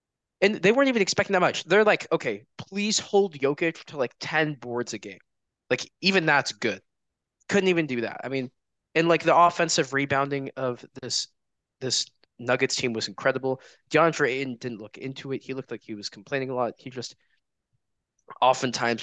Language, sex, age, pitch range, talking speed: English, male, 20-39, 115-150 Hz, 185 wpm